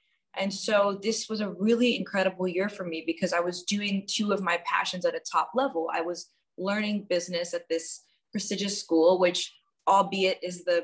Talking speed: 190 wpm